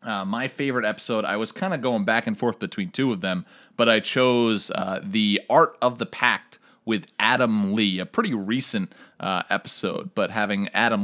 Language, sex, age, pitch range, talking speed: English, male, 30-49, 110-175 Hz, 195 wpm